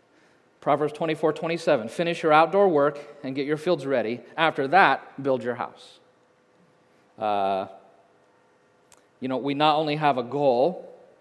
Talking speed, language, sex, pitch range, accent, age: 140 wpm, English, male, 120-150 Hz, American, 40-59